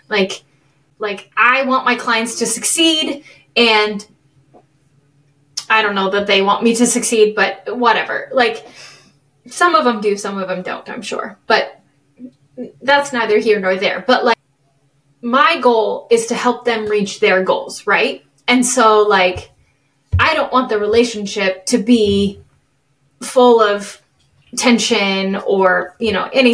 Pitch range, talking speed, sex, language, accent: 195-255 Hz, 150 wpm, female, English, American